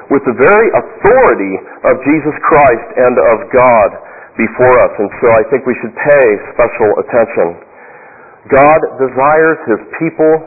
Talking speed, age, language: 145 wpm, 40-59, English